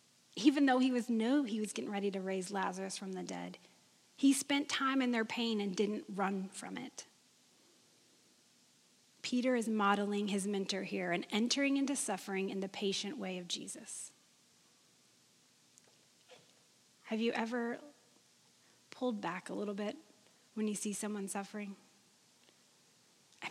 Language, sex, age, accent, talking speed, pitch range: English, female, 30-49, American, 145 wpm, 205-270 Hz